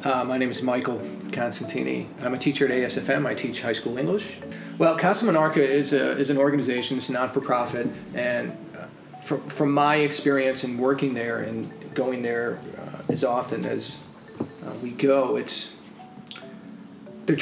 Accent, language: American, English